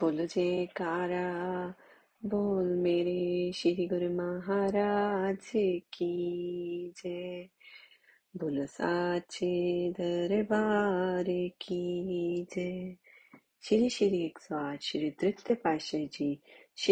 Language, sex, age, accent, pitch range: Hindi, female, 30-49, native, 150-190 Hz